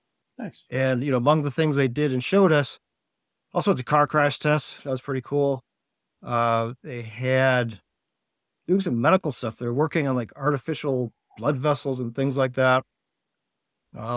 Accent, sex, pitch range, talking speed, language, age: American, male, 115-140 Hz, 170 wpm, English, 50-69